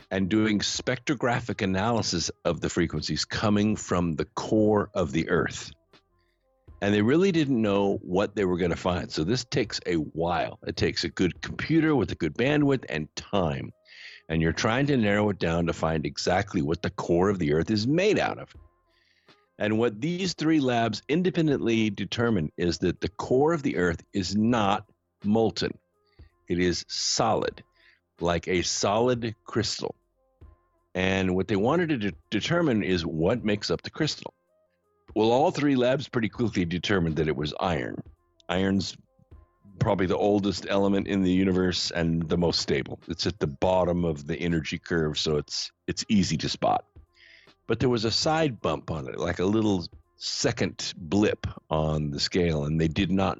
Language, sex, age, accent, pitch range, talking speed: English, male, 50-69, American, 85-115 Hz, 175 wpm